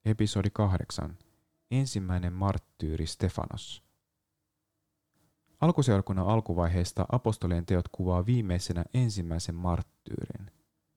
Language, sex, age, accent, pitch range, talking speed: Finnish, male, 30-49, native, 90-110 Hz, 70 wpm